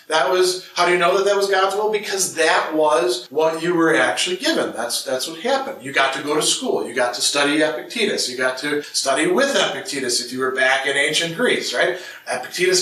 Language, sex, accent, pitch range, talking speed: English, male, American, 150-190 Hz, 230 wpm